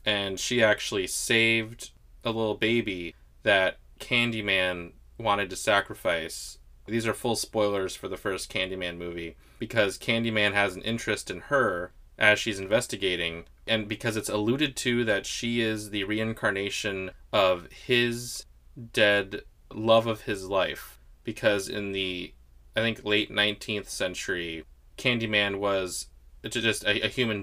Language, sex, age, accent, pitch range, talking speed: English, male, 20-39, American, 90-110 Hz, 135 wpm